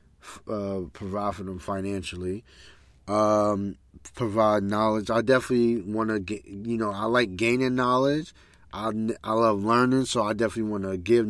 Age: 30-49